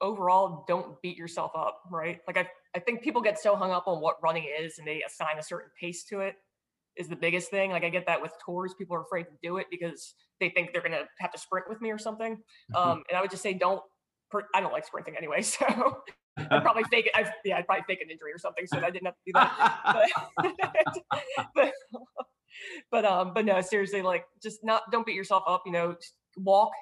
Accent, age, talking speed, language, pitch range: American, 20-39, 235 wpm, English, 175-205 Hz